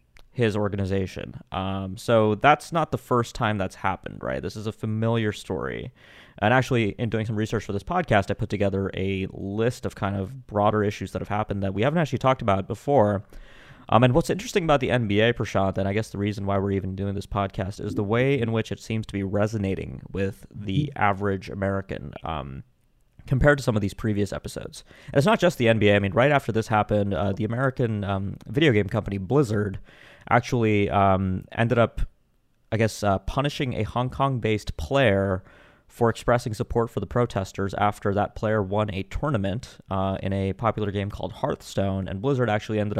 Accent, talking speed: American, 200 wpm